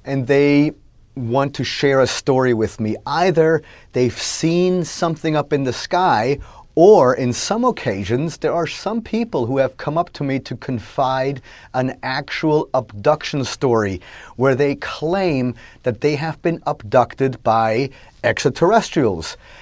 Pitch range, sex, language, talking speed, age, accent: 120-160 Hz, male, English, 145 wpm, 30-49, American